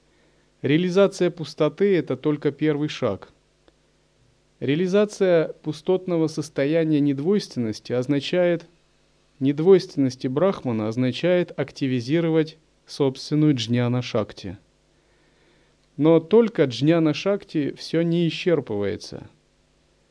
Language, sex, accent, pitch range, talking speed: Russian, male, native, 130-170 Hz, 70 wpm